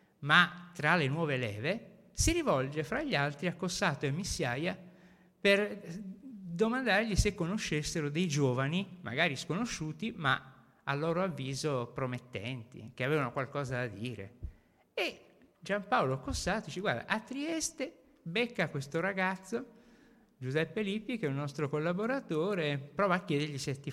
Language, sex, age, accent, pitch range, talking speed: Italian, male, 50-69, native, 140-200 Hz, 140 wpm